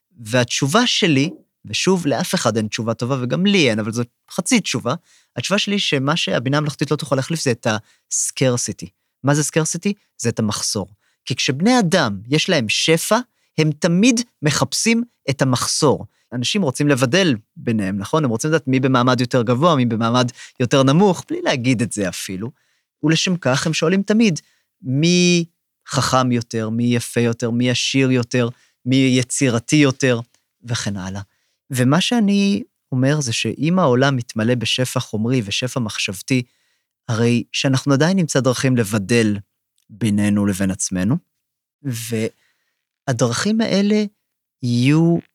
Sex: male